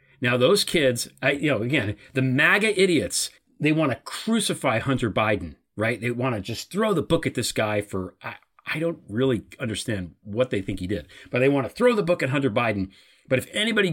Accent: American